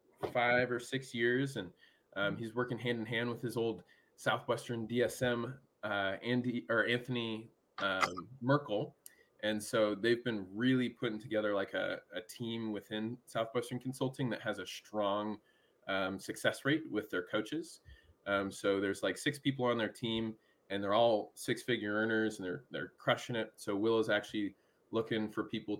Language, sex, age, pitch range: English, male, 20-39, 105-120 Hz